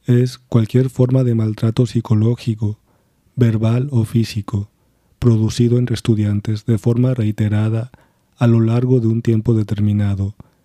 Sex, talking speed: male, 125 wpm